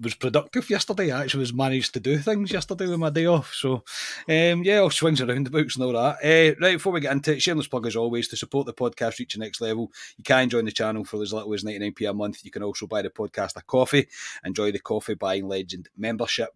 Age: 30-49